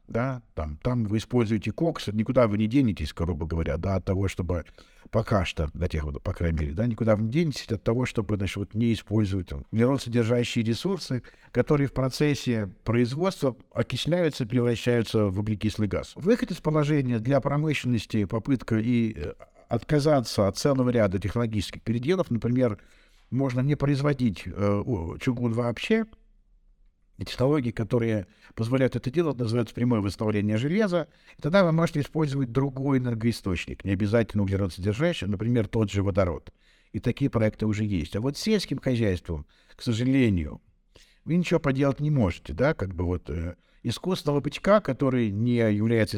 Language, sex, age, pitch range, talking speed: Russian, male, 60-79, 105-140 Hz, 140 wpm